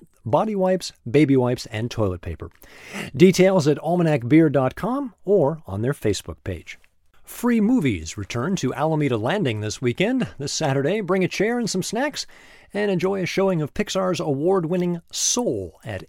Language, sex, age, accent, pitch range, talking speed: English, male, 50-69, American, 115-180 Hz, 150 wpm